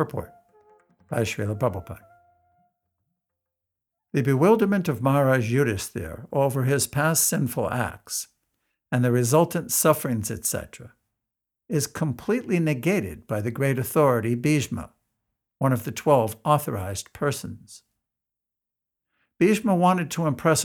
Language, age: English, 60-79